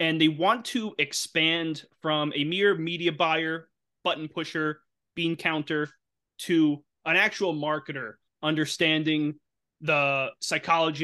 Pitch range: 145-170 Hz